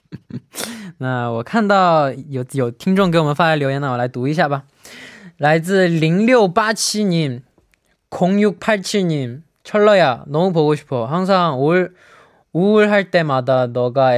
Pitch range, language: 130-175 Hz, Korean